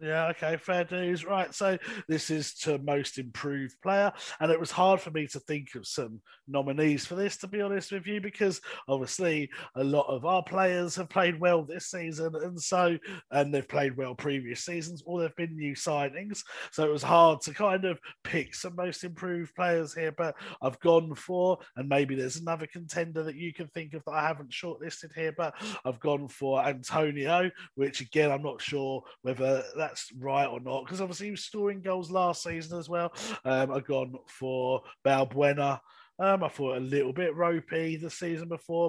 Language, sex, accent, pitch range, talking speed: English, male, British, 140-175 Hz, 195 wpm